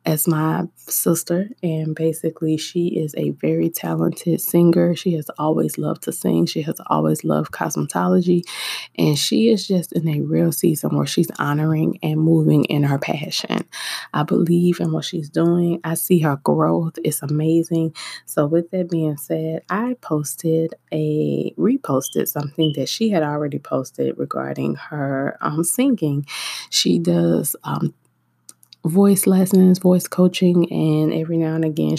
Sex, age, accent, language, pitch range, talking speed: female, 20-39, American, English, 140-170 Hz, 150 wpm